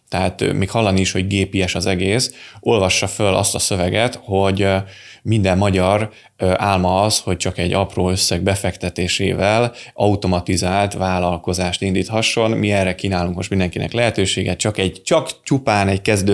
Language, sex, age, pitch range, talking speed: Hungarian, male, 20-39, 95-115 Hz, 140 wpm